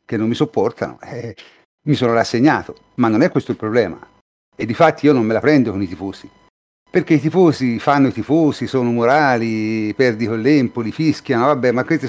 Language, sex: Italian, male